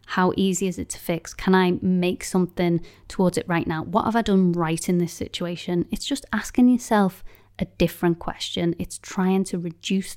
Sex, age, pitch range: female, 20-39, 175-200 Hz